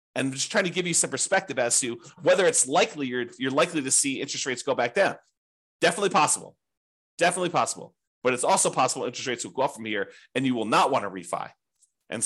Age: 30-49